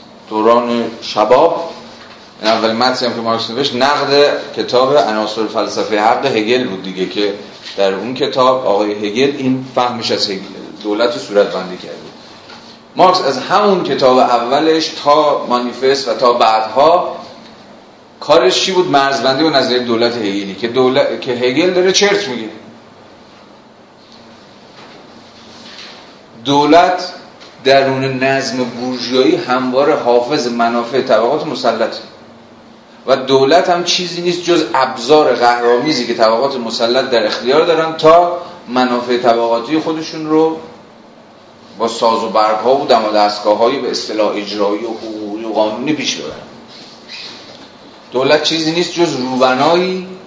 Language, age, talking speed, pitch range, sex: Persian, 40-59, 125 wpm, 115-150 Hz, male